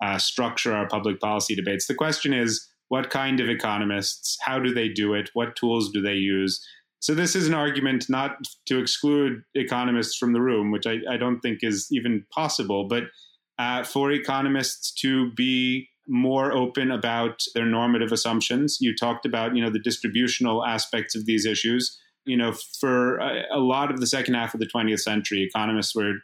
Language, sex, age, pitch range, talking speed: English, male, 30-49, 105-125 Hz, 185 wpm